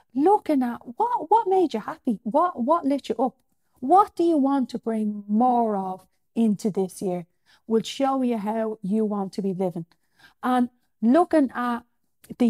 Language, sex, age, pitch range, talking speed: English, female, 40-59, 215-280 Hz, 175 wpm